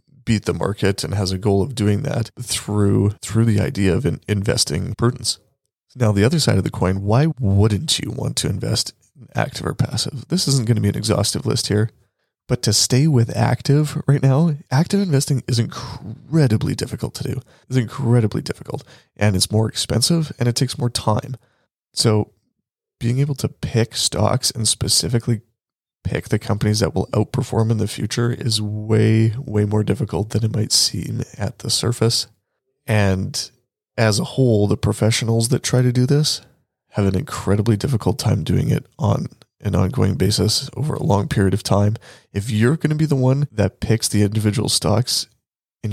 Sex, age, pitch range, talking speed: male, 20-39, 105-130 Hz, 185 wpm